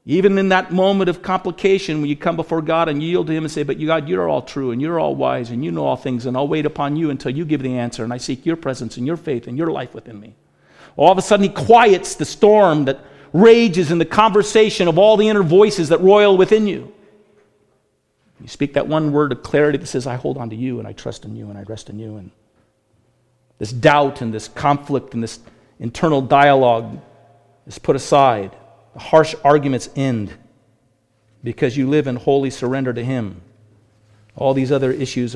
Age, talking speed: 50-69, 220 wpm